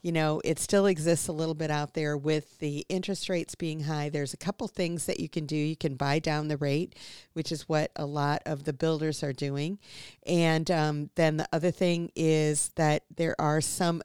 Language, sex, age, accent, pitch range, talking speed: English, female, 50-69, American, 145-165 Hz, 220 wpm